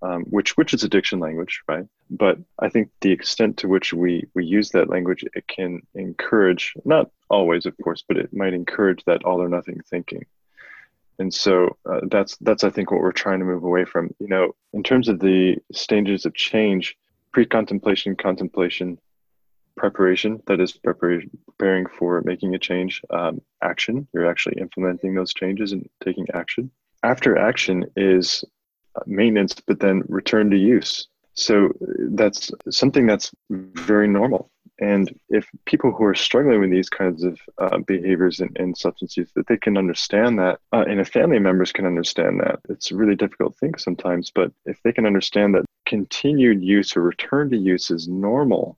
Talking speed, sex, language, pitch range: 175 wpm, male, English, 90-100 Hz